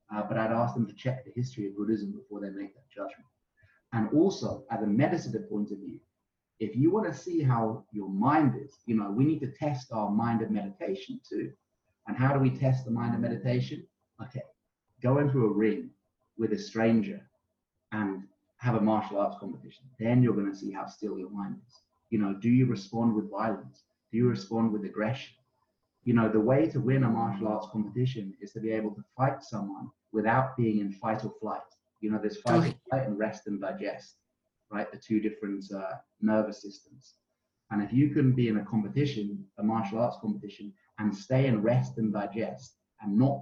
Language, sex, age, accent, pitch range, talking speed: English, male, 30-49, British, 105-125 Hz, 205 wpm